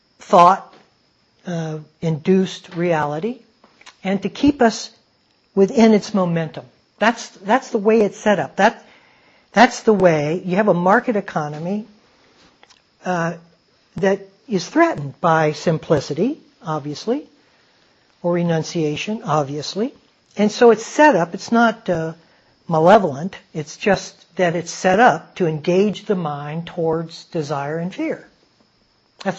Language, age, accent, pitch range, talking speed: English, 60-79, American, 165-215 Hz, 125 wpm